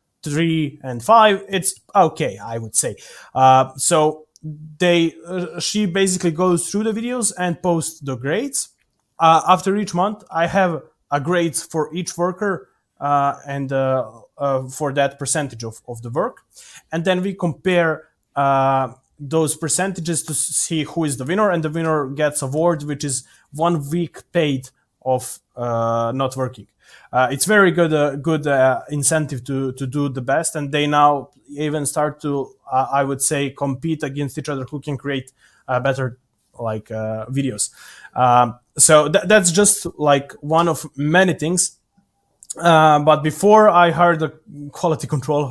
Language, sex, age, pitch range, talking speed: English, male, 20-39, 135-170 Hz, 160 wpm